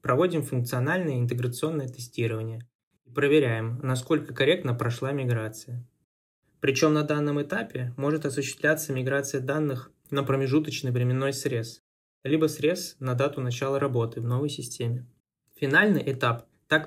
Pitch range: 125-150 Hz